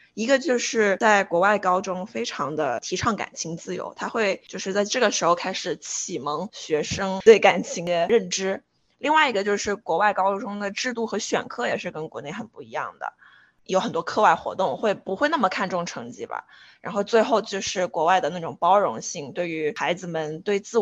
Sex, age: female, 20-39